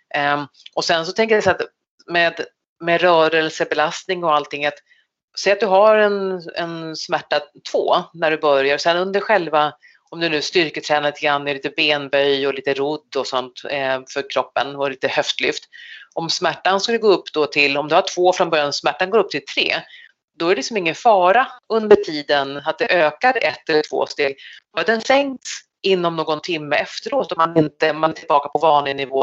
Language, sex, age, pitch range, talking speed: English, female, 30-49, 145-195 Hz, 200 wpm